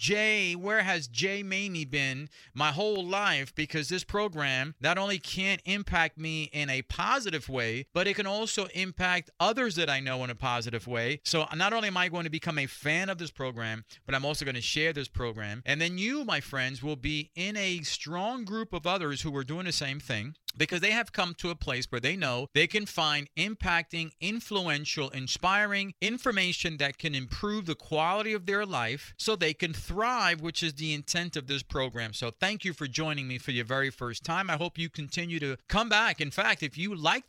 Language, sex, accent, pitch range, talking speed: English, male, American, 140-185 Hz, 215 wpm